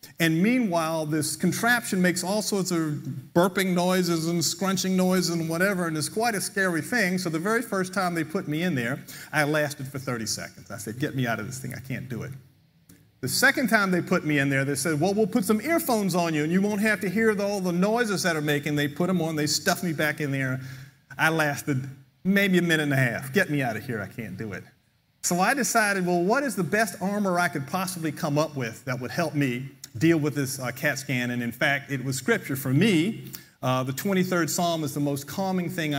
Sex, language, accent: male, English, American